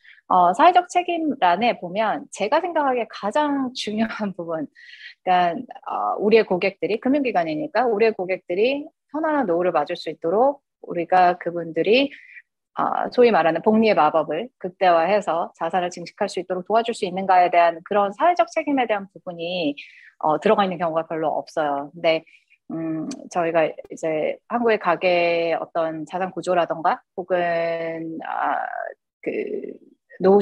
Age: 30-49